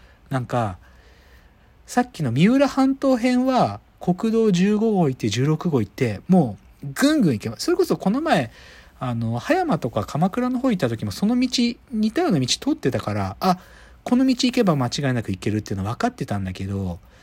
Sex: male